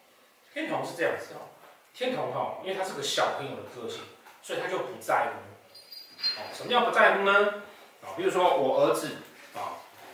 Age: 30-49